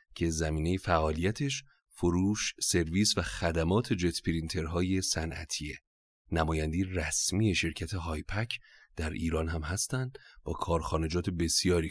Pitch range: 85-105 Hz